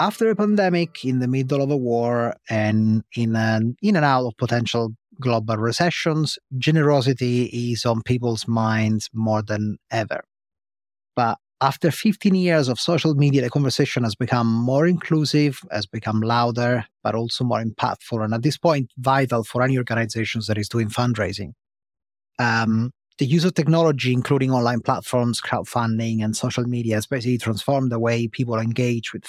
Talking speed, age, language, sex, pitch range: 160 wpm, 30-49, English, male, 115-140 Hz